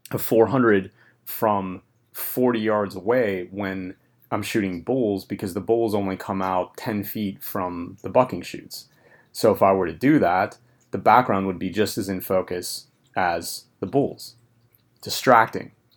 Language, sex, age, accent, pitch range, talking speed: English, male, 30-49, American, 95-110 Hz, 155 wpm